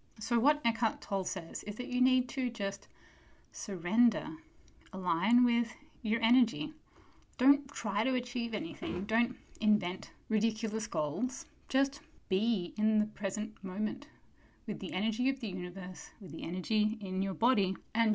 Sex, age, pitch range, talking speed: female, 30-49, 185-225 Hz, 145 wpm